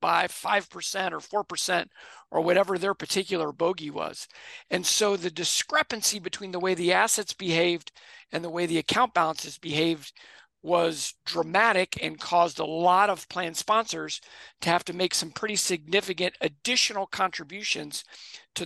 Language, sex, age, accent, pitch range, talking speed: English, male, 50-69, American, 170-215 Hz, 140 wpm